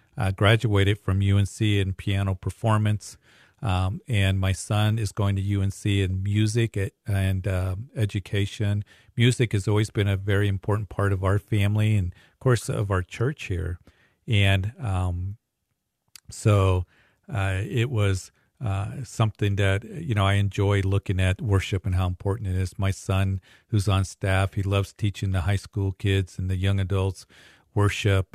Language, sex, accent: English, male, American